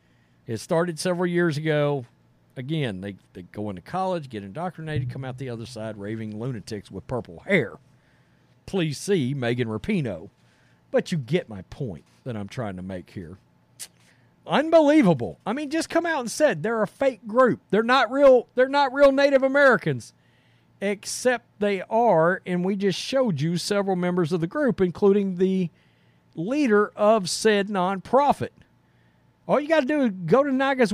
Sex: male